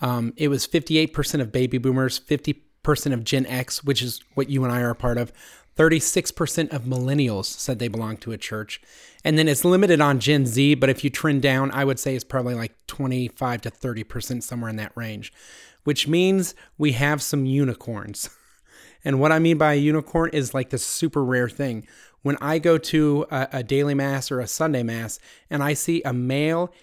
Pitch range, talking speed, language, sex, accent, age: 125-160 Hz, 200 wpm, English, male, American, 30-49